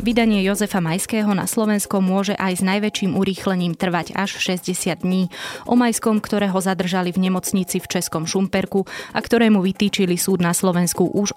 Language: Slovak